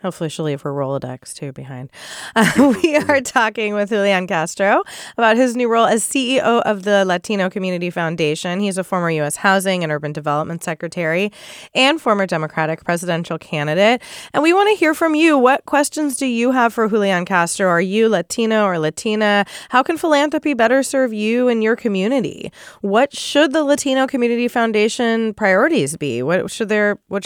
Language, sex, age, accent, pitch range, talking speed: English, female, 20-39, American, 185-235 Hz, 170 wpm